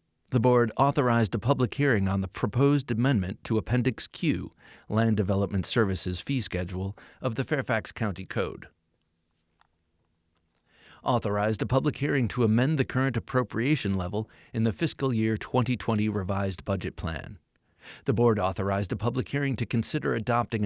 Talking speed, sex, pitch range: 145 wpm, male, 100-130 Hz